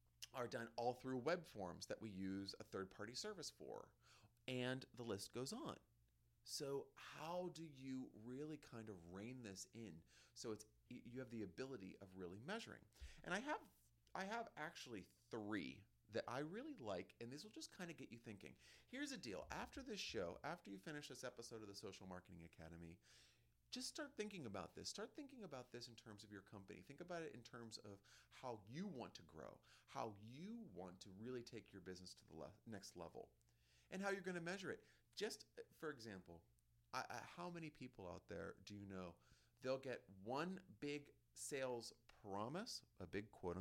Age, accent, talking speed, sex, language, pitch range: 30-49, American, 190 wpm, male, English, 100-145 Hz